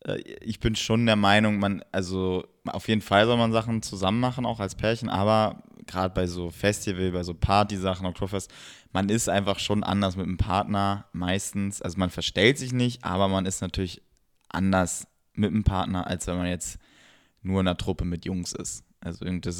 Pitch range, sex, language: 90-100 Hz, male, German